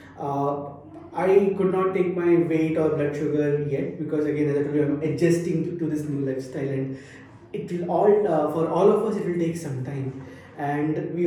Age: 20-39